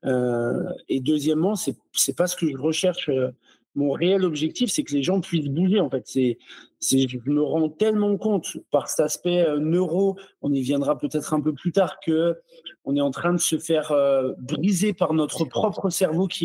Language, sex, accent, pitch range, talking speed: French, male, French, 145-190 Hz, 205 wpm